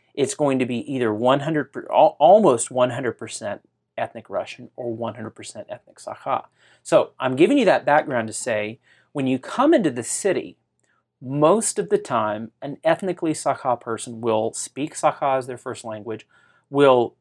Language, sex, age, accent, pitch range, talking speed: English, male, 40-59, American, 115-140 Hz, 155 wpm